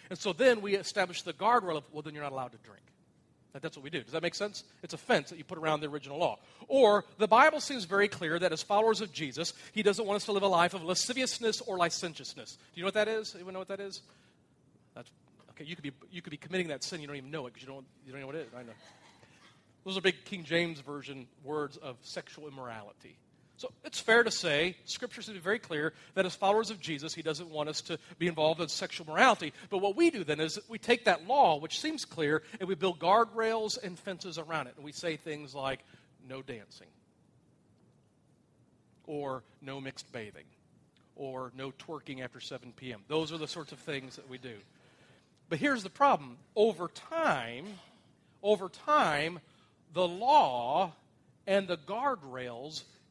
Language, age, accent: English, 40-59, American